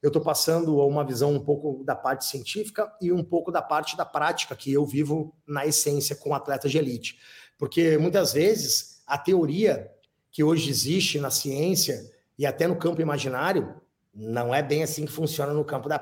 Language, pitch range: Portuguese, 135-155 Hz